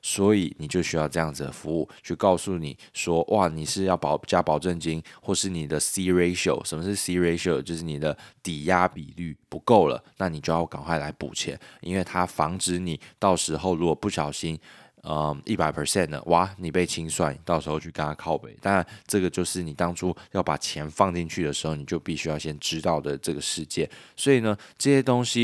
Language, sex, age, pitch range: Chinese, male, 20-39, 80-95 Hz